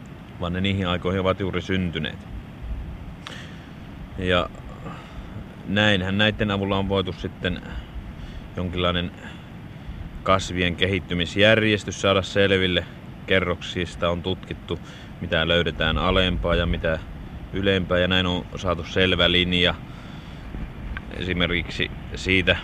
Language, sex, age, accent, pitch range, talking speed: Finnish, male, 30-49, native, 85-95 Hz, 95 wpm